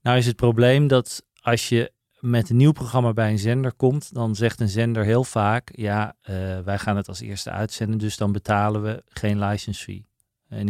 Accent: Dutch